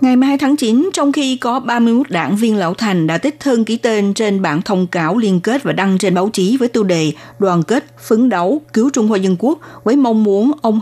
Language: Vietnamese